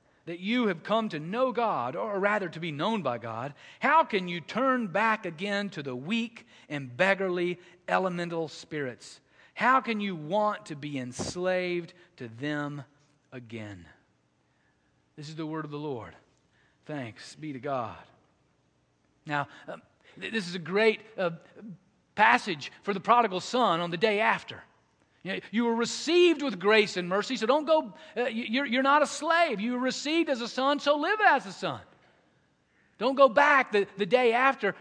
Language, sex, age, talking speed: English, male, 40-59, 165 wpm